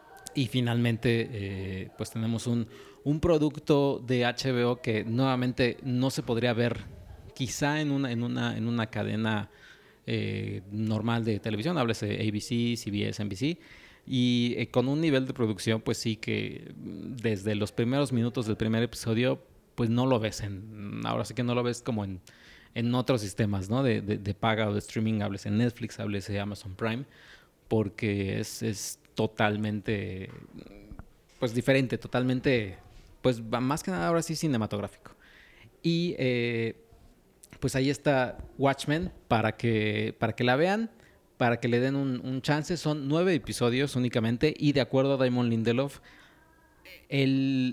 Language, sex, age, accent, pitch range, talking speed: Spanish, male, 30-49, Mexican, 110-135 Hz, 155 wpm